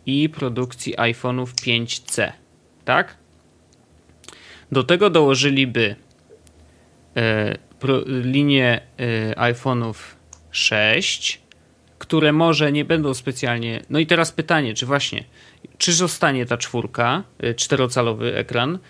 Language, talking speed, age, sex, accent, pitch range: Polish, 90 wpm, 30-49, male, native, 115-150 Hz